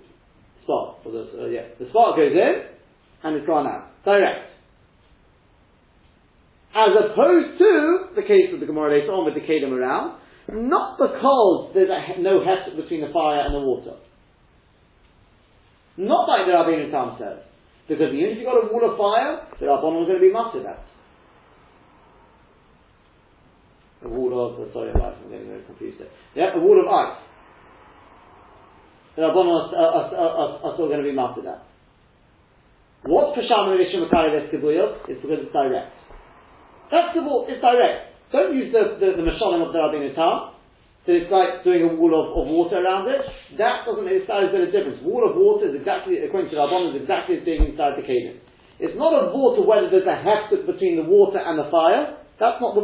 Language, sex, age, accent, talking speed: English, male, 40-59, British, 185 wpm